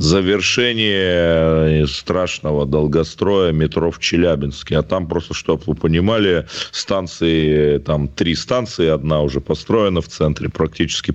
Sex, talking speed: male, 120 wpm